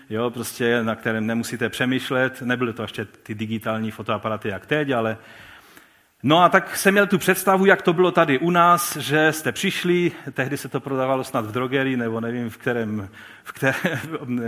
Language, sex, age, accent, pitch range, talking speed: Czech, male, 40-59, native, 120-170 Hz, 180 wpm